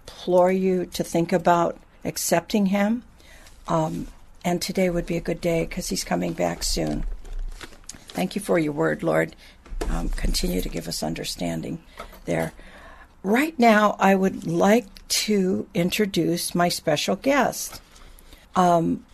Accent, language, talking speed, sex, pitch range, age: American, English, 140 wpm, female, 160-195 Hz, 60-79